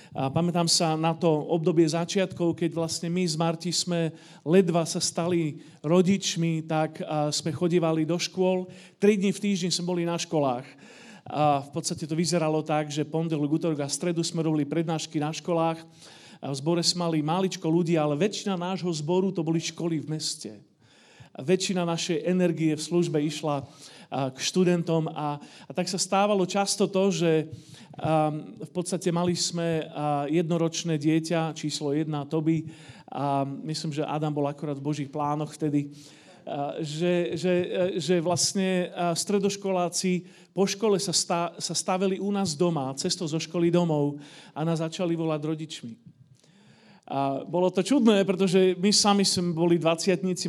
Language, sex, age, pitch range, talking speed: Slovak, male, 40-59, 155-185 Hz, 150 wpm